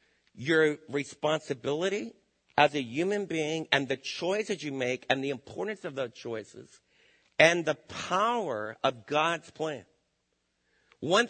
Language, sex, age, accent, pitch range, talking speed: English, male, 50-69, American, 145-180 Hz, 130 wpm